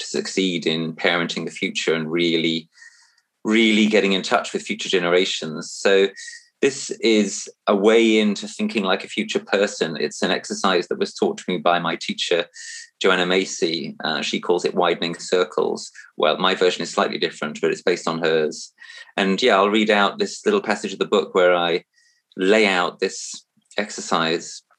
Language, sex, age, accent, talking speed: English, male, 30-49, British, 175 wpm